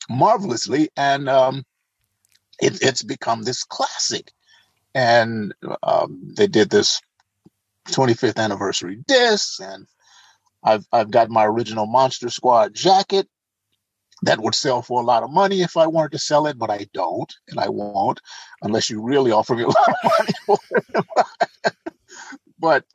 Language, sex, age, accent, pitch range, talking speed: English, male, 50-69, American, 120-185 Hz, 145 wpm